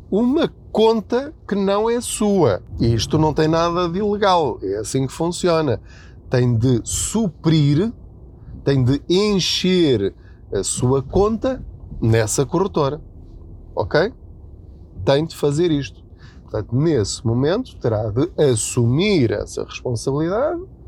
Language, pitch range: Portuguese, 110-160 Hz